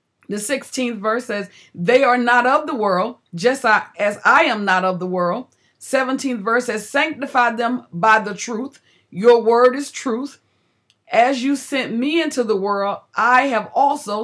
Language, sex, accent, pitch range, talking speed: English, female, American, 185-240 Hz, 170 wpm